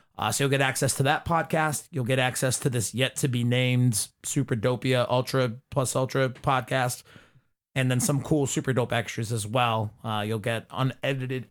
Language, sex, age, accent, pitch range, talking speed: English, male, 30-49, American, 120-145 Hz, 170 wpm